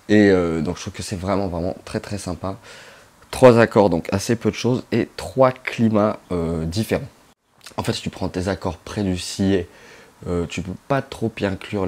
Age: 20-39